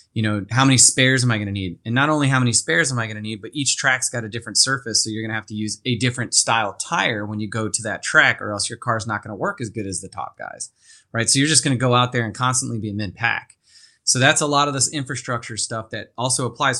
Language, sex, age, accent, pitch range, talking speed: English, male, 30-49, American, 115-130 Hz, 305 wpm